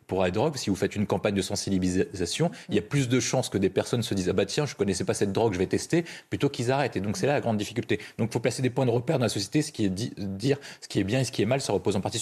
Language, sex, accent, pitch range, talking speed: French, male, French, 95-130 Hz, 355 wpm